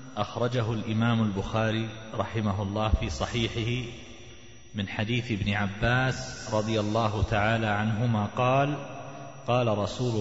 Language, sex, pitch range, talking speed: Arabic, male, 110-125 Hz, 105 wpm